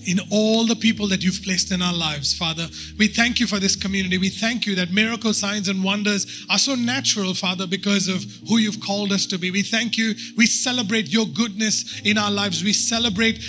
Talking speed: 220 wpm